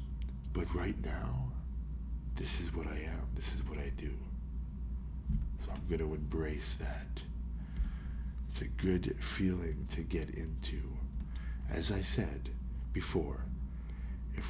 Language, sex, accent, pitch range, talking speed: English, male, American, 65-85 Hz, 130 wpm